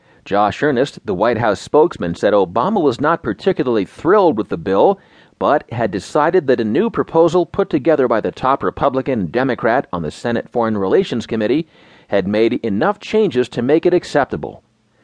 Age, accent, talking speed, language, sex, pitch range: 40-59, American, 170 wpm, English, male, 120-185 Hz